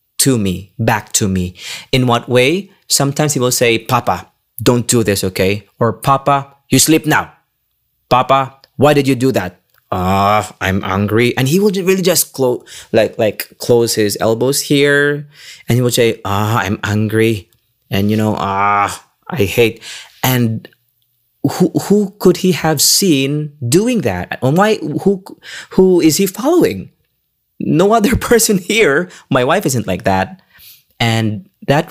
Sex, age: male, 20-39